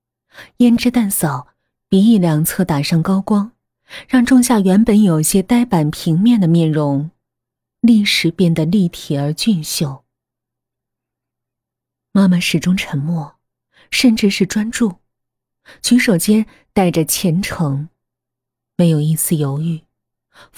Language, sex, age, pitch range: Chinese, female, 20-39, 145-210 Hz